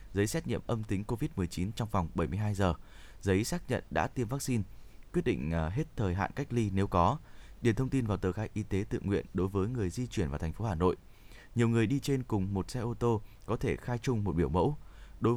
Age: 20-39